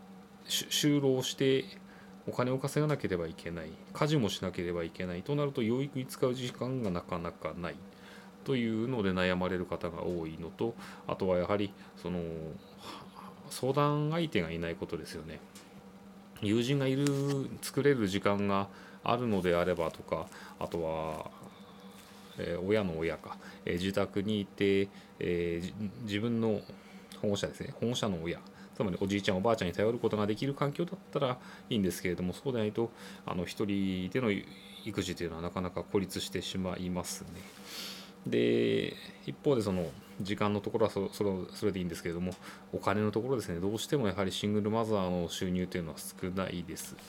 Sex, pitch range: male, 90-115 Hz